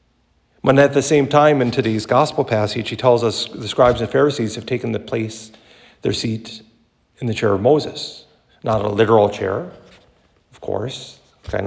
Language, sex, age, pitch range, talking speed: English, male, 50-69, 105-135 Hz, 175 wpm